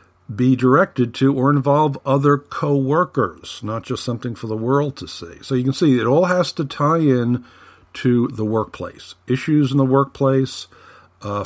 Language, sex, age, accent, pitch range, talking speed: English, male, 50-69, American, 100-130 Hz, 175 wpm